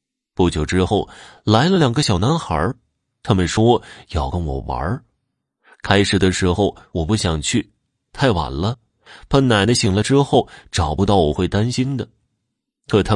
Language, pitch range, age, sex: Chinese, 95-140 Hz, 30-49, male